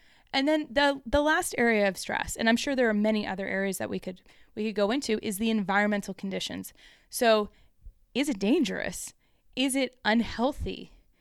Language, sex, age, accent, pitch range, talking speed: English, female, 20-39, American, 205-260 Hz, 180 wpm